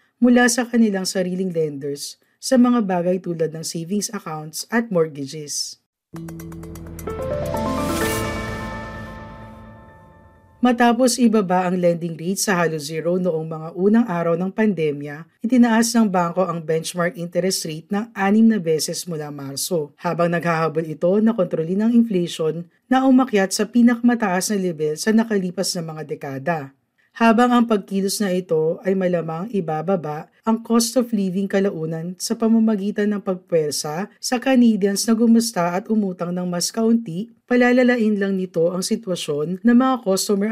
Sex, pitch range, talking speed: female, 155-210 Hz, 140 wpm